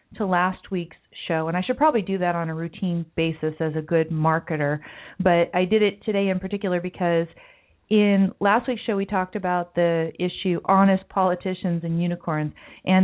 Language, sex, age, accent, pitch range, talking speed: English, female, 40-59, American, 165-195 Hz, 185 wpm